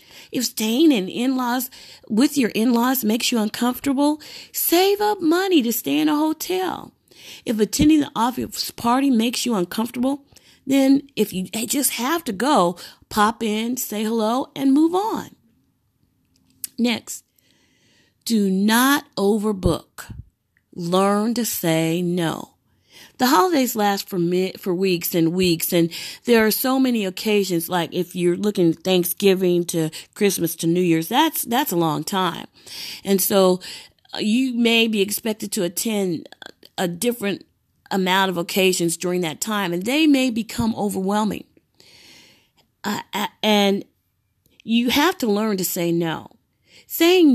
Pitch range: 185-255 Hz